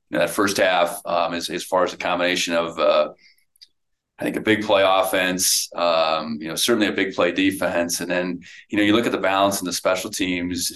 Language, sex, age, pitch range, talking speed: English, male, 30-49, 85-95 Hz, 235 wpm